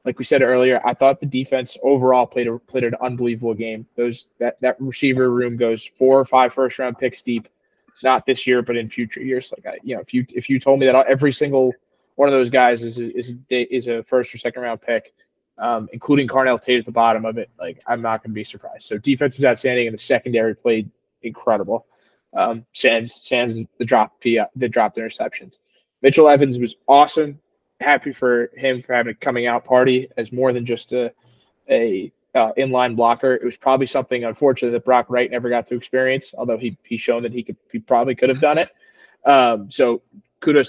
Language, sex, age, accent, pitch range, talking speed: English, male, 20-39, American, 120-135 Hz, 210 wpm